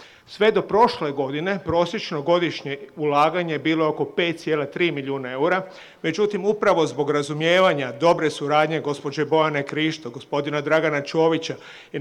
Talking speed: 130 wpm